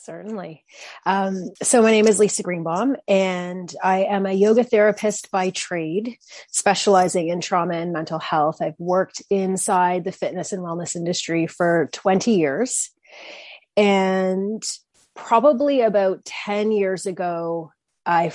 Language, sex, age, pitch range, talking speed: English, female, 30-49, 170-195 Hz, 130 wpm